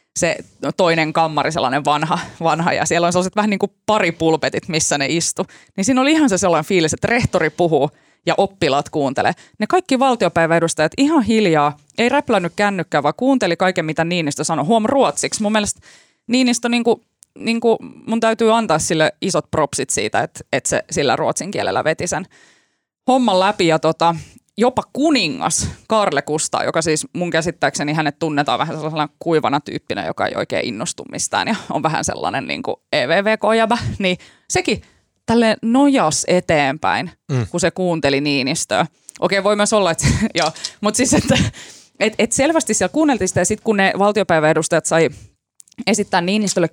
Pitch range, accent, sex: 160-225 Hz, native, female